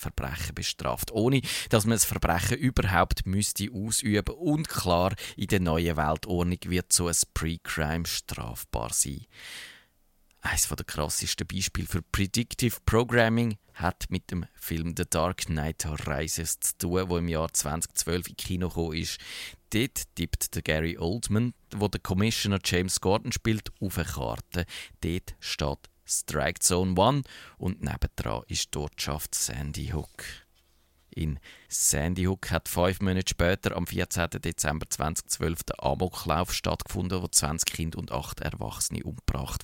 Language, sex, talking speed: German, male, 140 wpm